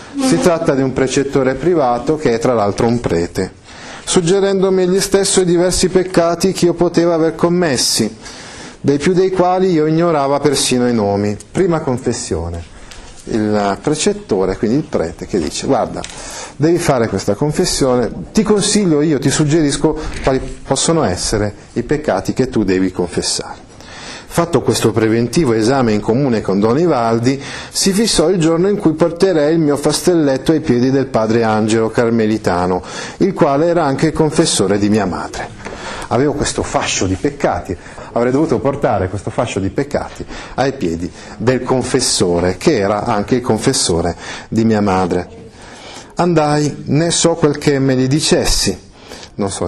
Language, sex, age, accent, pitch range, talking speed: Italian, male, 40-59, native, 110-165 Hz, 155 wpm